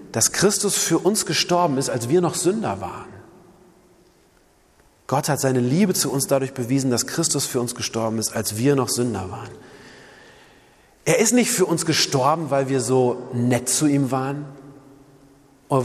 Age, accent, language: 30-49, German, German